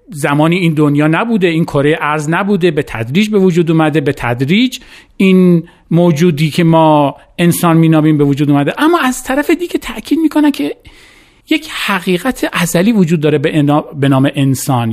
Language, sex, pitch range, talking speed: Persian, male, 135-205 Hz, 165 wpm